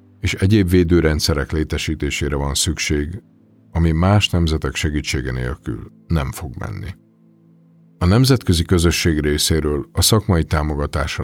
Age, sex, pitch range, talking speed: 50-69, male, 75-90 Hz, 110 wpm